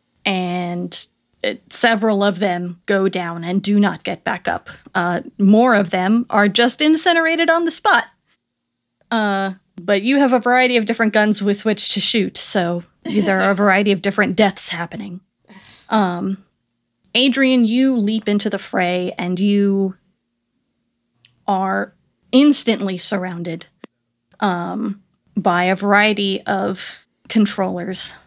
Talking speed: 130 wpm